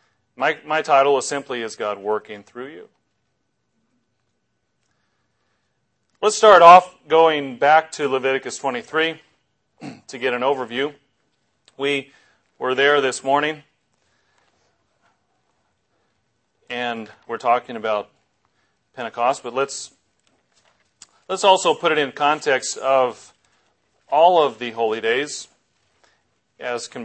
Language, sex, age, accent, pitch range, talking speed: English, male, 40-59, American, 135-175 Hz, 105 wpm